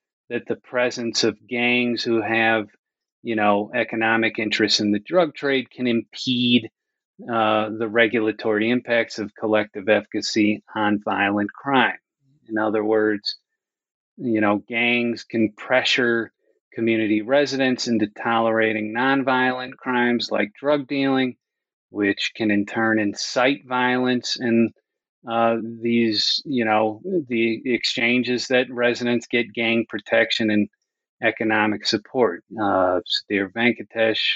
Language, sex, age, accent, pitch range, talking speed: English, male, 30-49, American, 110-125 Hz, 120 wpm